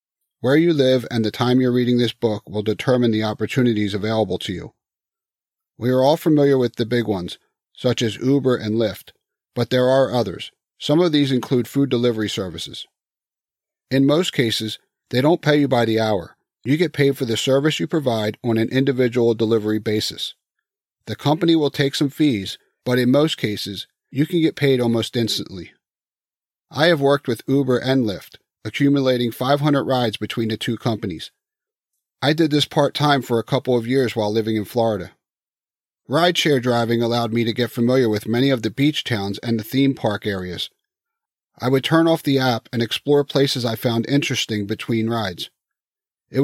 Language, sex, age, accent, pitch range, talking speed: English, male, 40-59, American, 110-135 Hz, 180 wpm